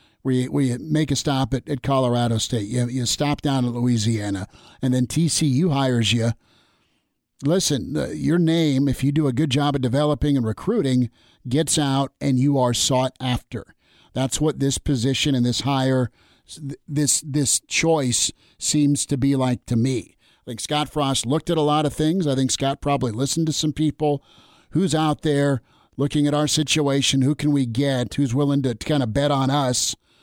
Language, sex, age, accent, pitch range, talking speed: English, male, 50-69, American, 125-145 Hz, 190 wpm